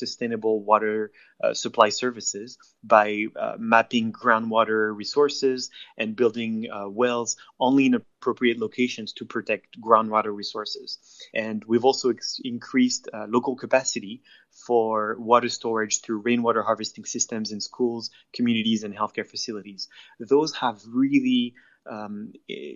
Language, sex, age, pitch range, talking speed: English, male, 20-39, 110-140 Hz, 120 wpm